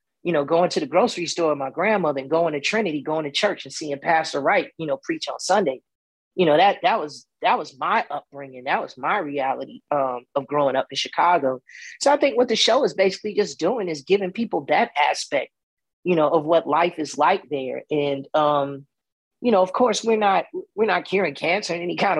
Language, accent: English, American